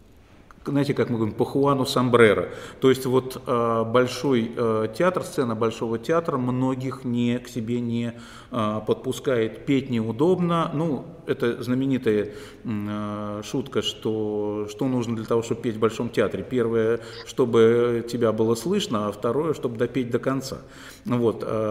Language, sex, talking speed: Russian, male, 135 wpm